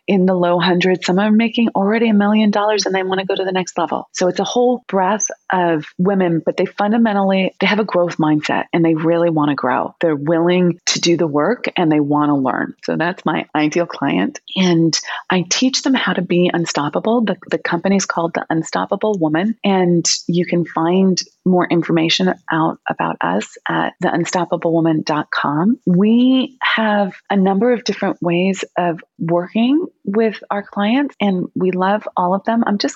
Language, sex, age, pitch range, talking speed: English, female, 30-49, 175-215 Hz, 190 wpm